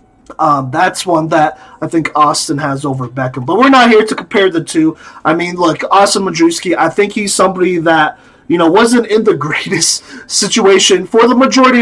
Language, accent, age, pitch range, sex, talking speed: English, American, 30-49, 160-200 Hz, male, 195 wpm